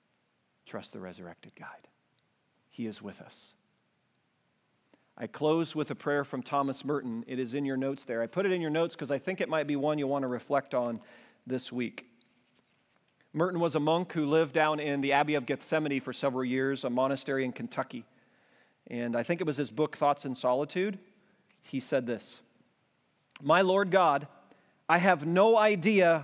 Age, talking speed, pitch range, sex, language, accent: 40-59, 185 wpm, 145-215 Hz, male, English, American